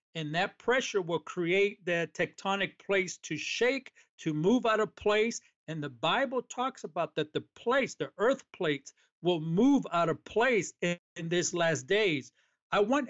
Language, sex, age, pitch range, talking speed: English, male, 50-69, 170-225 Hz, 175 wpm